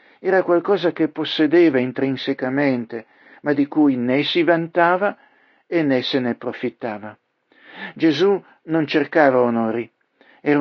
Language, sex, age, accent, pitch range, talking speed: Italian, male, 50-69, native, 130-165 Hz, 120 wpm